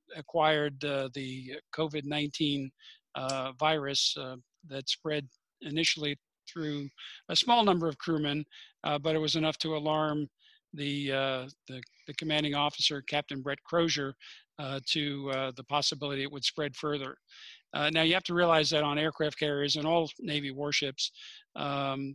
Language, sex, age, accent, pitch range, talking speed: English, male, 50-69, American, 140-160 Hz, 150 wpm